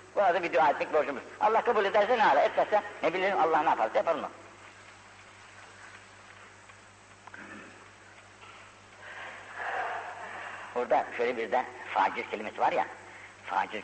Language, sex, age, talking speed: Turkish, female, 60-79, 120 wpm